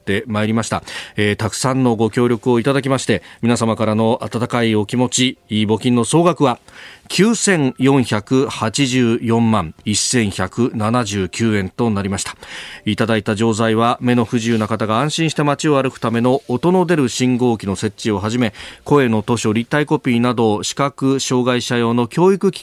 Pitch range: 105-135 Hz